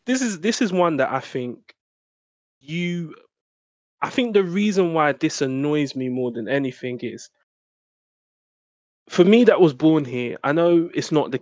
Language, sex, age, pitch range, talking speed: English, male, 20-39, 125-150 Hz, 170 wpm